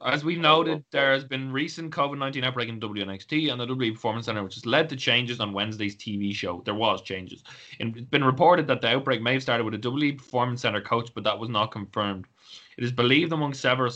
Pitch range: 105-130 Hz